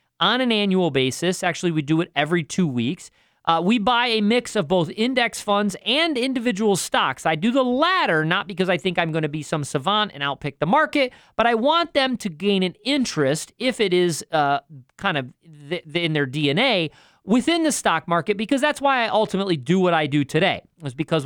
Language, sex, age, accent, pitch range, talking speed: English, male, 40-59, American, 155-230 Hz, 210 wpm